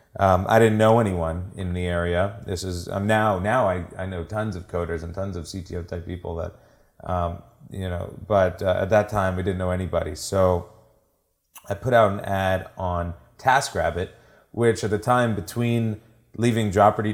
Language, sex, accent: English, male, American